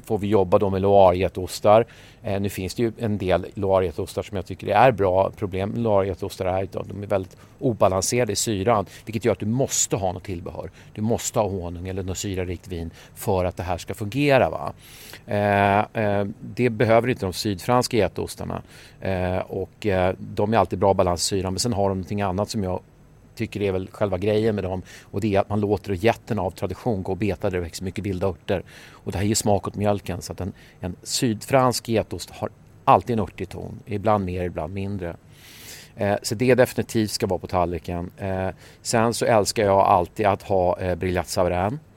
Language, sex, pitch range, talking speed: English, male, 95-115 Hz, 200 wpm